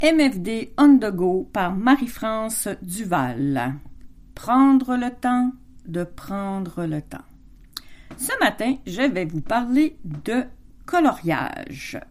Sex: female